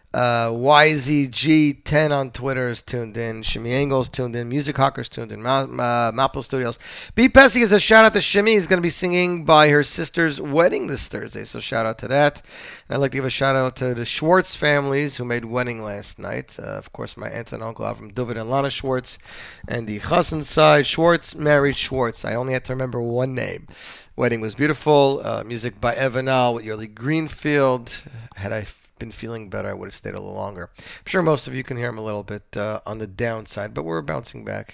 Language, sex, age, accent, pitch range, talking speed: English, male, 30-49, American, 115-150 Hz, 220 wpm